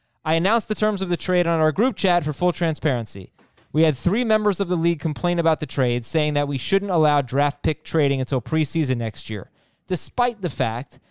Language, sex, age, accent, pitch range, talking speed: English, male, 20-39, American, 140-185 Hz, 215 wpm